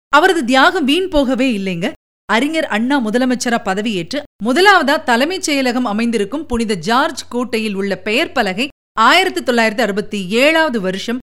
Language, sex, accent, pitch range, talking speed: Tamil, female, native, 210-290 Hz, 120 wpm